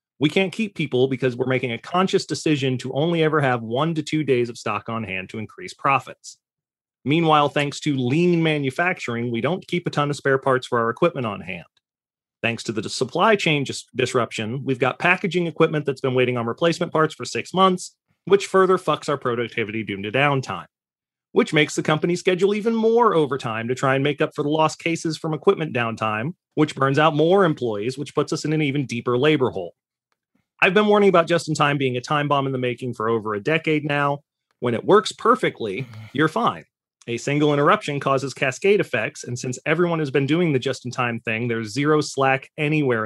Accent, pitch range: American, 125-165 Hz